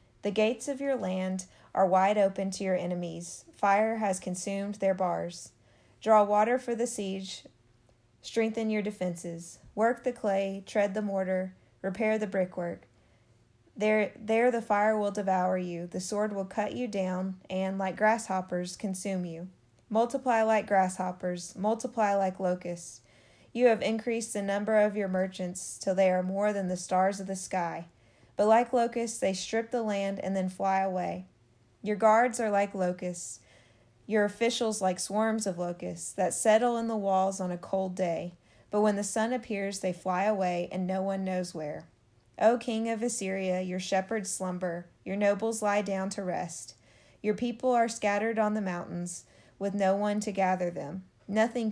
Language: English